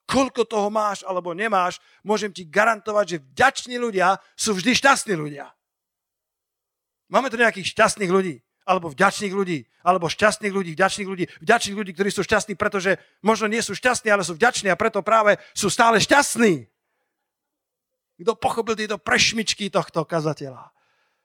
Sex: male